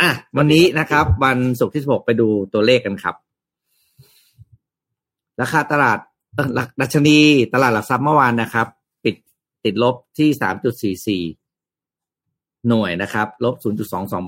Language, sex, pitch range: Thai, male, 105-130 Hz